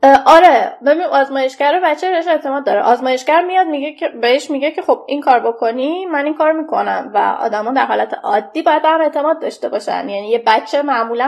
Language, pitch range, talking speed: Persian, 235-310 Hz, 190 wpm